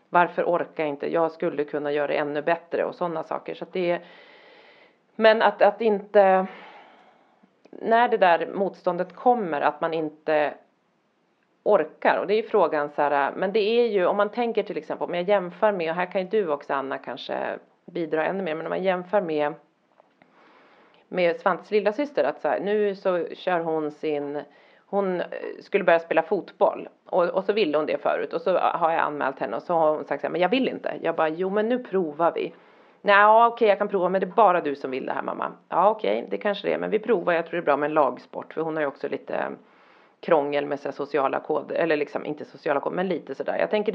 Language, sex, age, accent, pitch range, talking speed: Swedish, female, 40-59, native, 155-210 Hz, 225 wpm